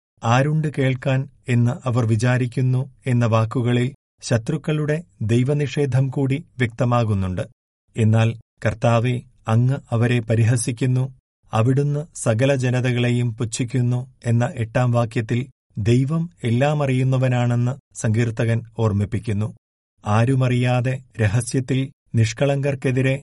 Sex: male